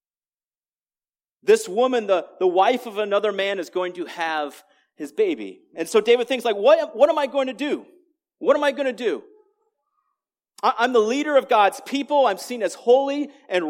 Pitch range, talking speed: 190-285 Hz, 190 wpm